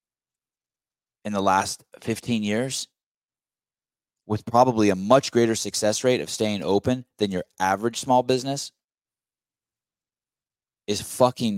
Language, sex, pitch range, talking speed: English, male, 85-115 Hz, 115 wpm